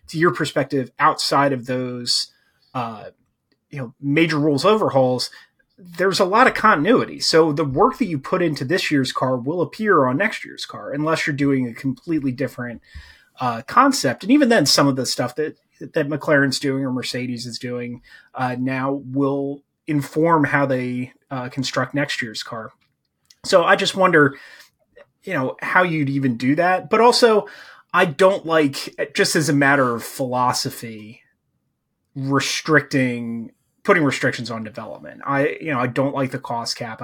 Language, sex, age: English, male, 30-49